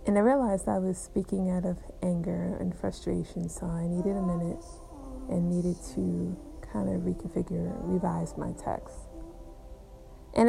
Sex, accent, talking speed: female, American, 150 wpm